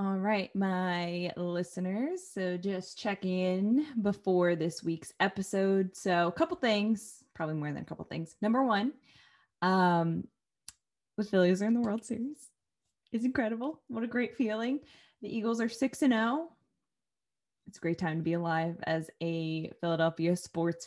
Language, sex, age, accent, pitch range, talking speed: English, female, 20-39, American, 180-240 Hz, 160 wpm